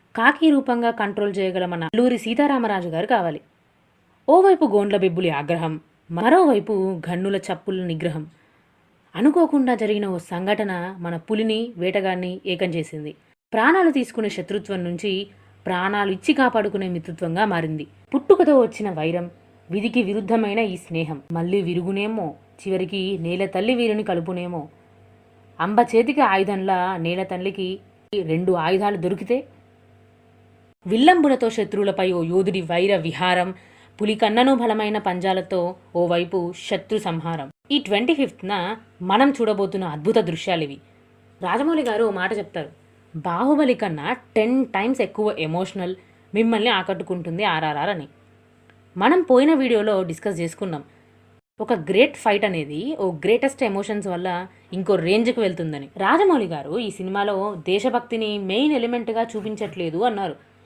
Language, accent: Telugu, native